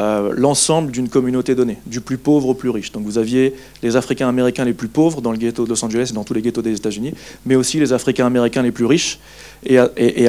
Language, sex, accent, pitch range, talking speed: French, male, French, 115-140 Hz, 245 wpm